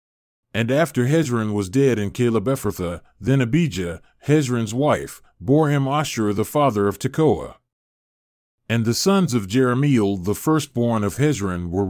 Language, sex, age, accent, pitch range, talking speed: English, male, 40-59, American, 105-140 Hz, 145 wpm